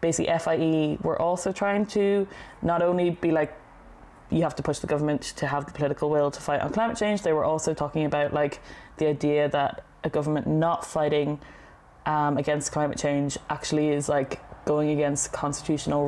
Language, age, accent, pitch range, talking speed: English, 20-39, Irish, 145-160 Hz, 185 wpm